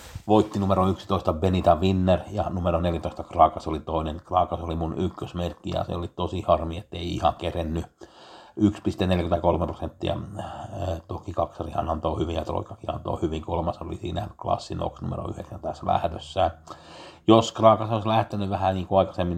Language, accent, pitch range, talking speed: Finnish, native, 85-100 Hz, 160 wpm